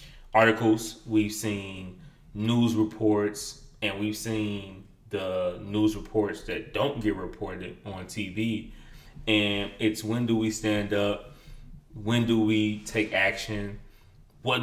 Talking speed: 125 wpm